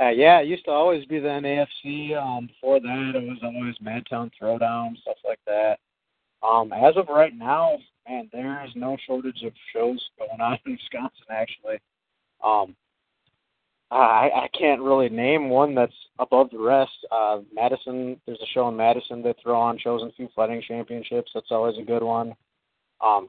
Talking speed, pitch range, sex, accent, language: 180 wpm, 115-130 Hz, male, American, English